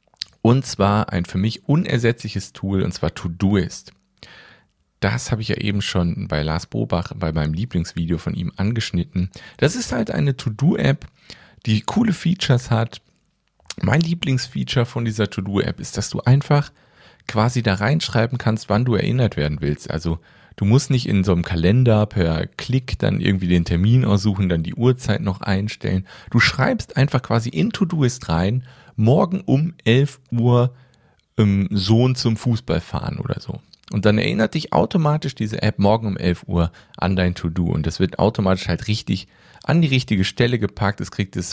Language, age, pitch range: German, 40-59, 95-125 Hz